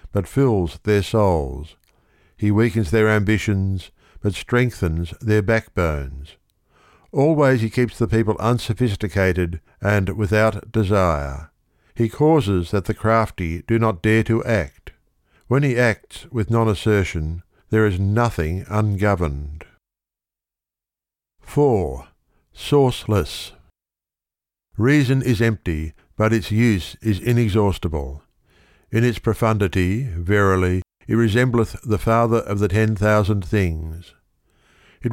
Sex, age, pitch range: male, 60-79, 90-115 Hz